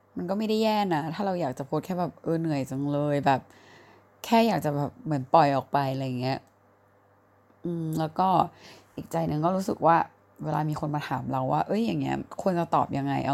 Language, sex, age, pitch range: Thai, female, 20-39, 130-165 Hz